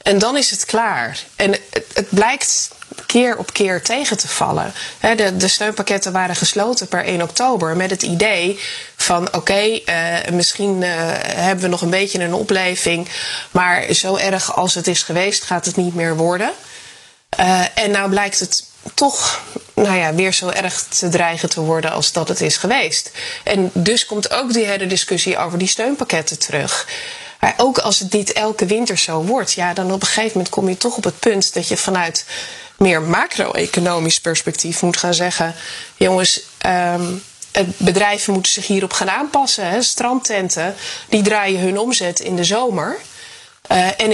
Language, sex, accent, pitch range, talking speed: Dutch, female, Dutch, 175-220 Hz, 165 wpm